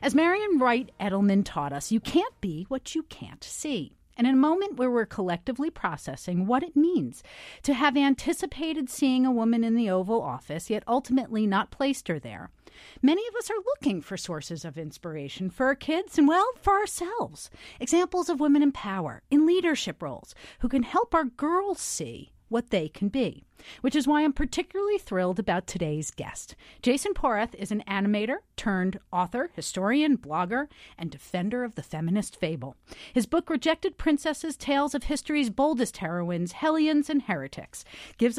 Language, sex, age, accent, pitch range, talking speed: English, female, 40-59, American, 195-295 Hz, 175 wpm